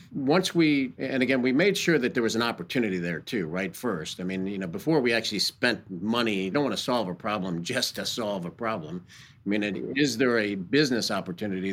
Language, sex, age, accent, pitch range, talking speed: English, male, 50-69, American, 110-140 Hz, 230 wpm